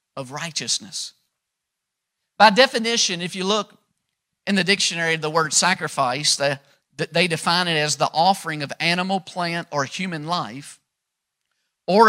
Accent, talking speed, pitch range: American, 135 wpm, 160-210 Hz